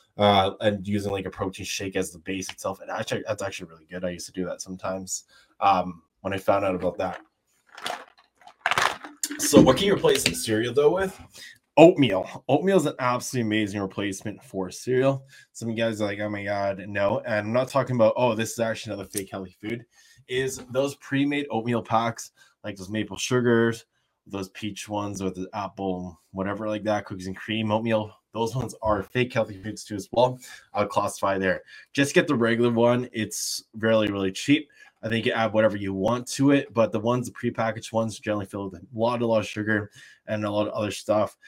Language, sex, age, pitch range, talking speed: English, male, 20-39, 100-120 Hz, 205 wpm